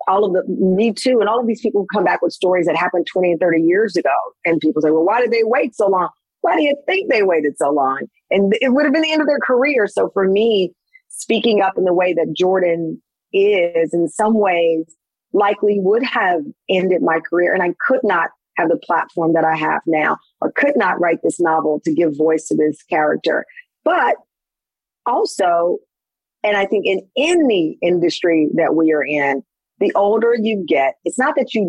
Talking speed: 210 wpm